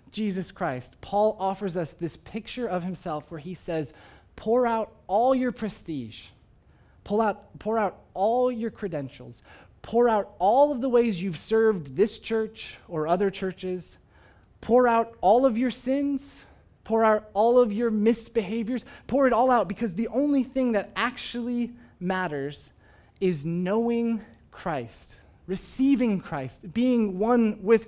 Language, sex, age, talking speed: English, male, 20-39, 140 wpm